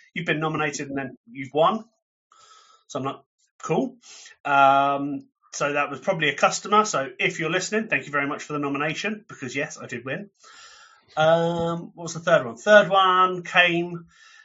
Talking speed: 180 wpm